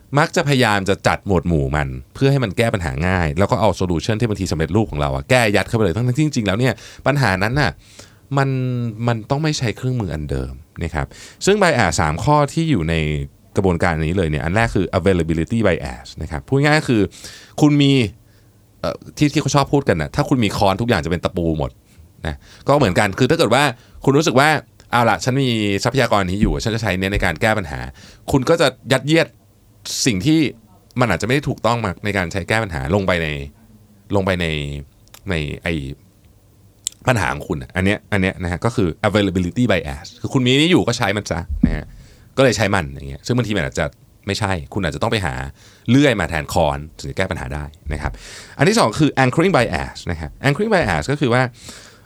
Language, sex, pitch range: Thai, male, 85-125 Hz